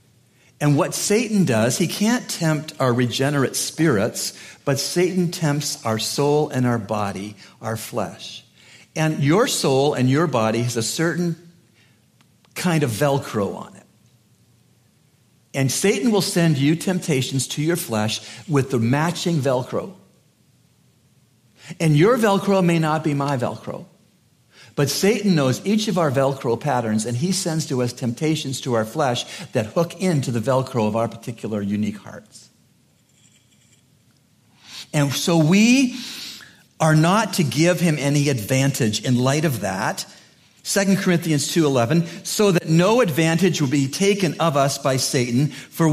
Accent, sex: American, male